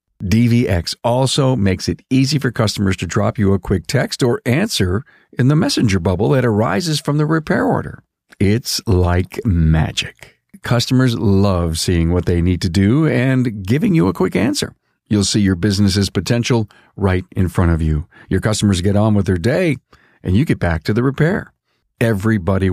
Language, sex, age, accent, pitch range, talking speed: English, male, 50-69, American, 100-130 Hz, 175 wpm